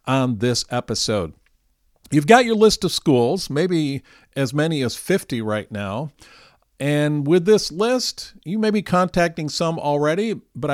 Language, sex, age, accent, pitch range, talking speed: English, male, 50-69, American, 125-165 Hz, 150 wpm